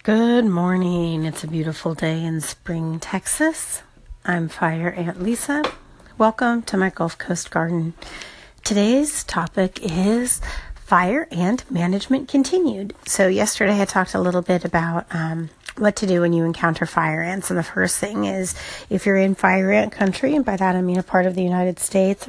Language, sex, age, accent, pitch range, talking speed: English, female, 30-49, American, 170-200 Hz, 175 wpm